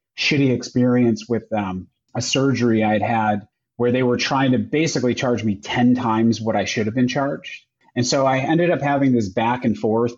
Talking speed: 200 wpm